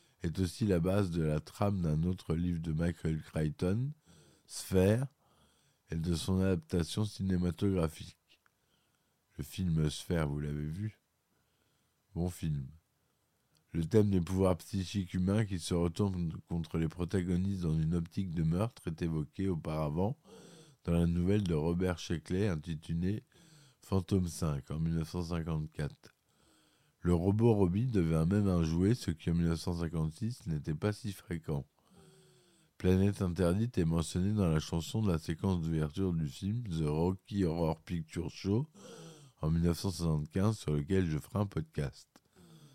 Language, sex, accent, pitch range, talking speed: French, male, French, 80-100 Hz, 145 wpm